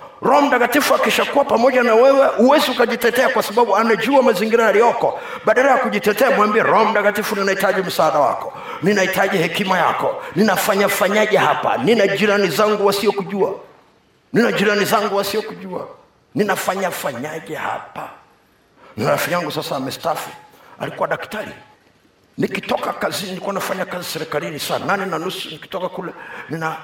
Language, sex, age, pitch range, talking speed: Swahili, male, 50-69, 155-215 Hz, 120 wpm